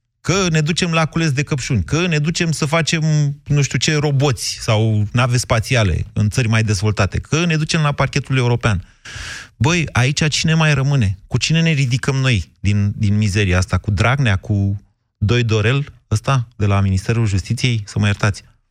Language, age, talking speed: Romanian, 30-49, 180 wpm